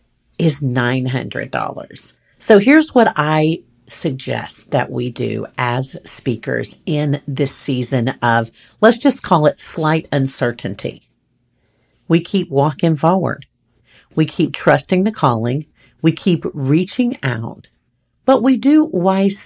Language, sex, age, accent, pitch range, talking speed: English, female, 50-69, American, 140-200 Hz, 120 wpm